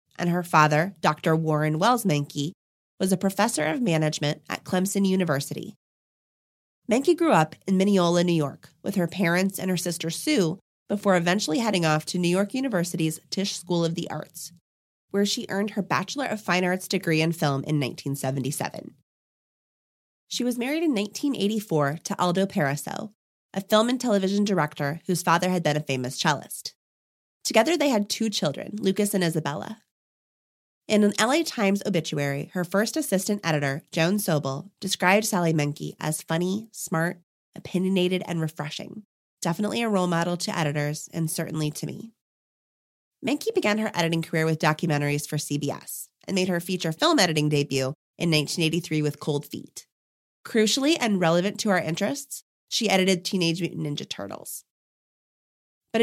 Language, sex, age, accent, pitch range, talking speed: English, female, 20-39, American, 155-205 Hz, 155 wpm